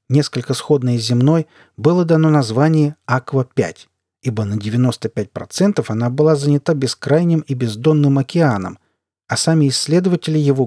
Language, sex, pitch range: Russian, male, 110-150 Hz